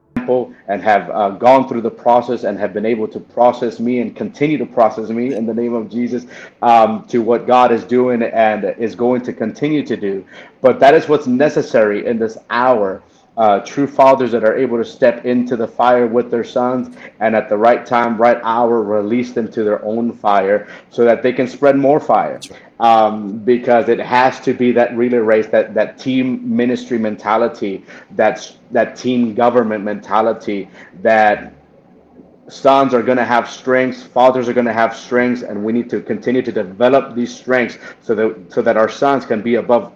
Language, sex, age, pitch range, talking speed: English, male, 30-49, 115-130 Hz, 195 wpm